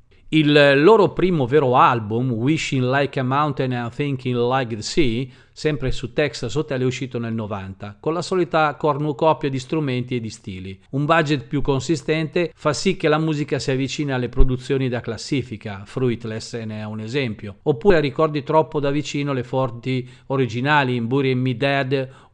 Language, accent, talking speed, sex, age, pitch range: Italian, native, 170 wpm, male, 40-59, 125-150 Hz